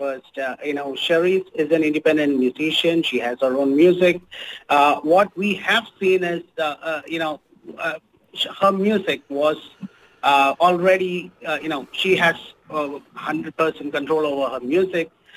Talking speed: 160 wpm